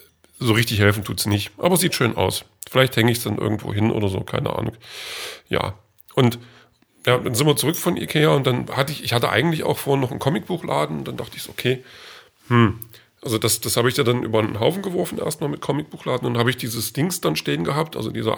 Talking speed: 240 wpm